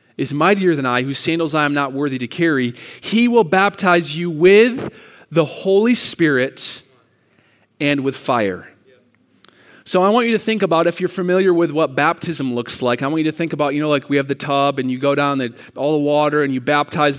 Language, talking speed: English, 215 wpm